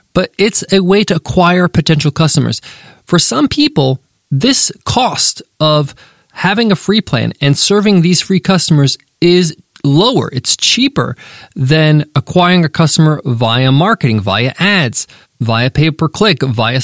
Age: 20-39